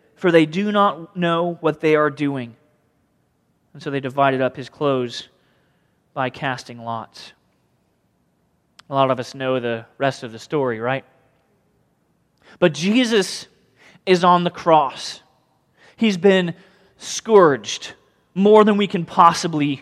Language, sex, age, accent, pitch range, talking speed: English, male, 30-49, American, 145-195 Hz, 135 wpm